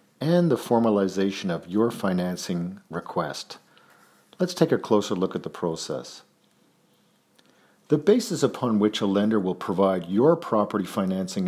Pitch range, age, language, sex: 100-145 Hz, 50-69, English, male